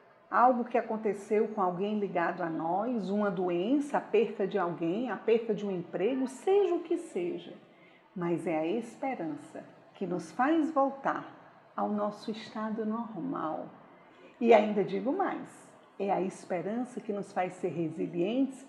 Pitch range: 190-280 Hz